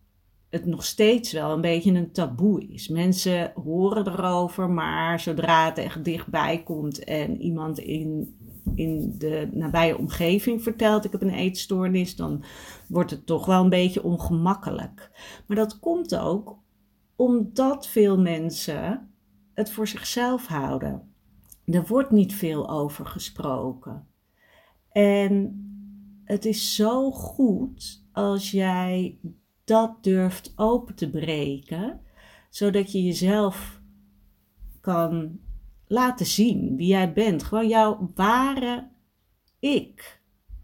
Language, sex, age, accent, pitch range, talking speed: Dutch, female, 50-69, Dutch, 155-210 Hz, 120 wpm